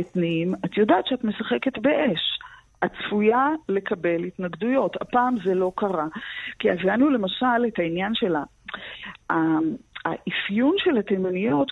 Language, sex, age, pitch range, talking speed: Hebrew, female, 50-69, 180-250 Hz, 115 wpm